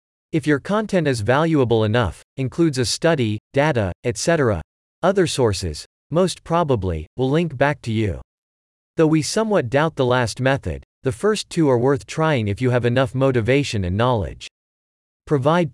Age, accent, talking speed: 40-59, American, 155 wpm